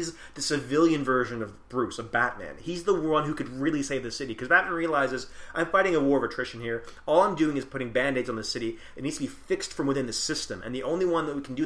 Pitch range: 125-165 Hz